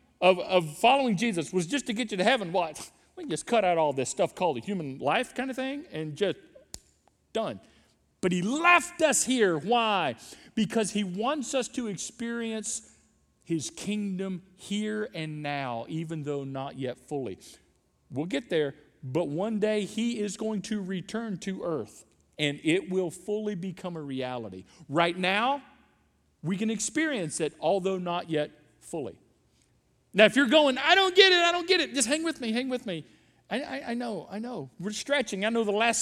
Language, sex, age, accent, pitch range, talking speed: English, male, 40-59, American, 170-255 Hz, 190 wpm